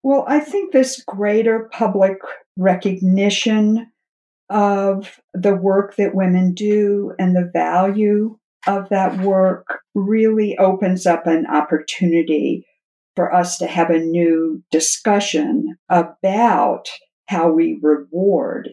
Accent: American